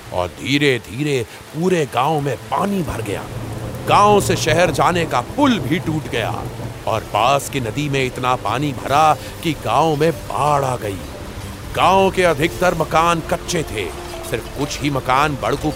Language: Hindi